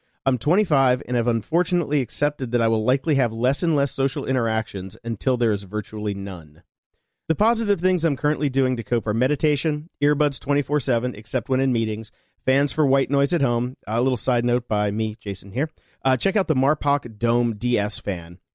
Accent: American